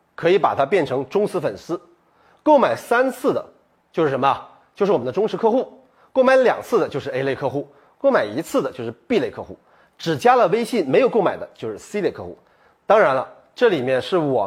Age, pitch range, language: 30-49, 175-260 Hz, Chinese